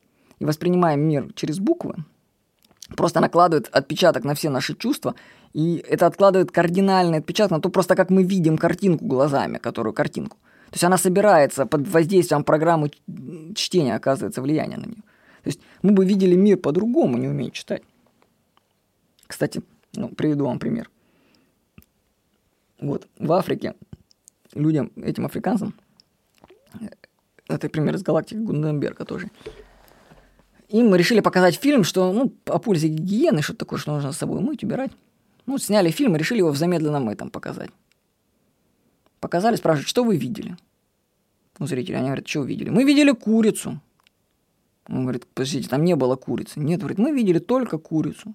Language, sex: Russian, female